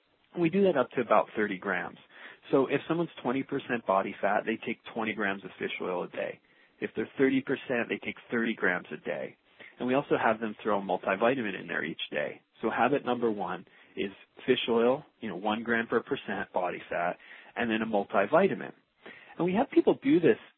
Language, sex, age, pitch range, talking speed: English, male, 30-49, 110-140 Hz, 200 wpm